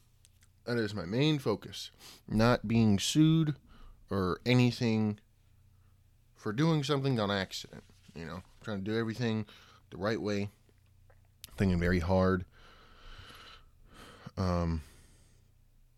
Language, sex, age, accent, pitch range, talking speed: English, male, 20-39, American, 95-115 Hz, 105 wpm